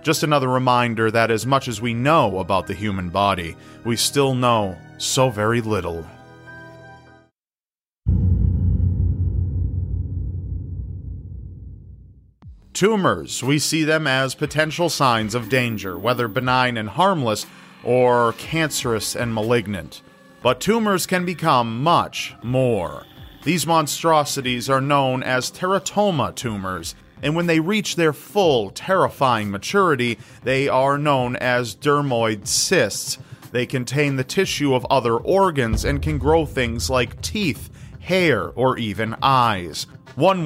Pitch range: 105-145 Hz